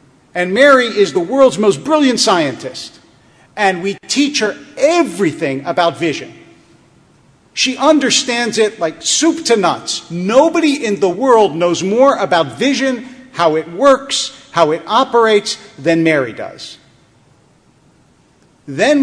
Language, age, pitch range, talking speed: English, 50-69, 165-260 Hz, 125 wpm